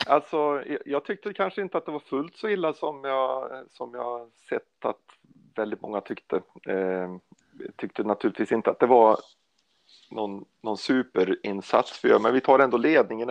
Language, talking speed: Swedish, 160 wpm